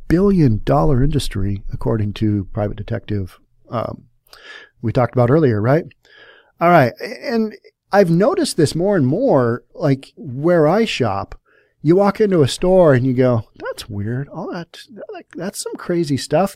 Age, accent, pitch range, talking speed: 40-59, American, 115-155 Hz, 150 wpm